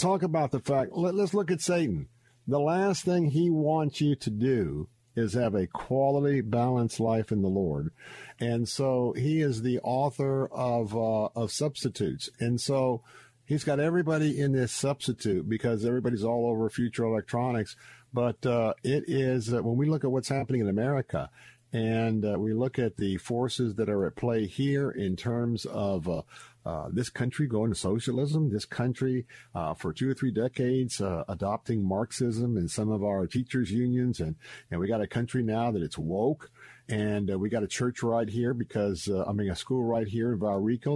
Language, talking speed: English, 190 wpm